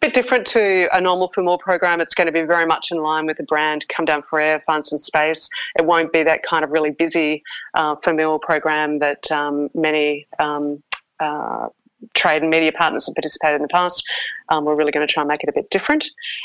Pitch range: 155-180 Hz